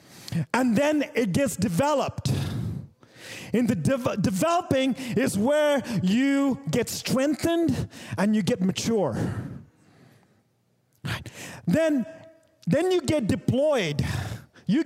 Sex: male